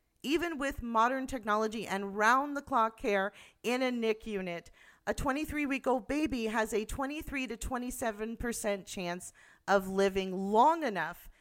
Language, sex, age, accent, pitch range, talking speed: English, female, 40-59, American, 210-300 Hz, 145 wpm